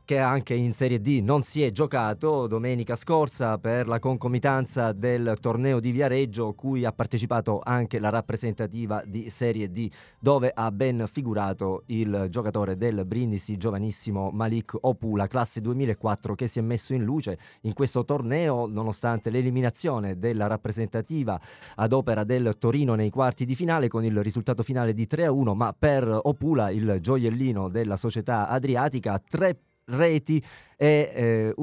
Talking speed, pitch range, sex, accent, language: 155 wpm, 110-140 Hz, male, native, Italian